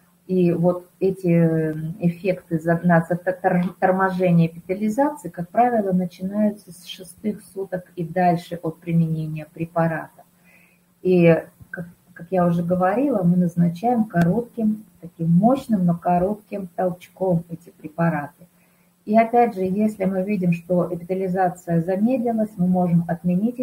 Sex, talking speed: female, 115 wpm